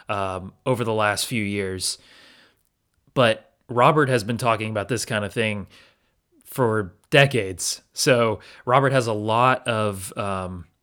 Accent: American